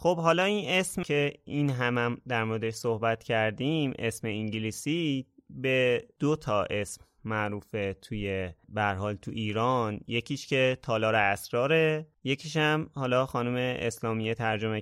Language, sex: Persian, male